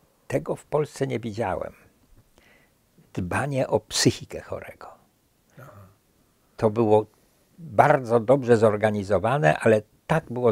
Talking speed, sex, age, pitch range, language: 95 wpm, male, 60-79, 95-125 Hz, Polish